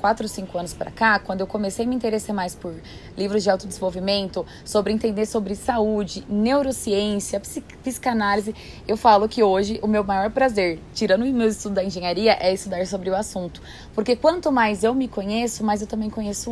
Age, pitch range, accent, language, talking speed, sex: 10-29, 190-230 Hz, Brazilian, Portuguese, 185 wpm, female